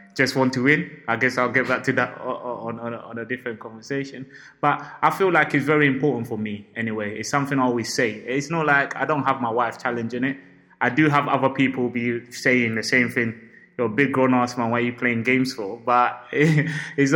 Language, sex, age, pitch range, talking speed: English, male, 20-39, 115-140 Hz, 235 wpm